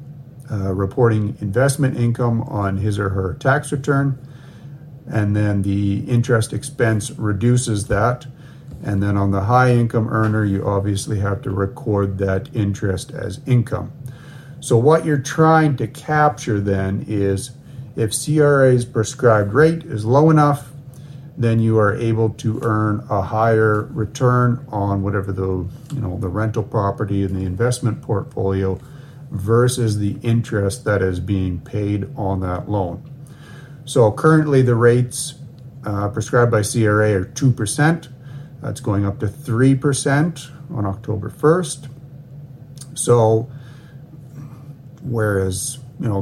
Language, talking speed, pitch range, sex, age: English, 130 wpm, 105-140 Hz, male, 50-69